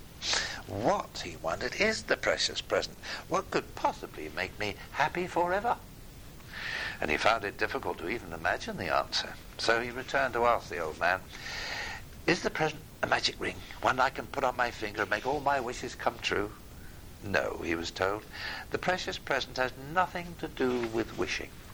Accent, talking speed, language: British, 180 wpm, English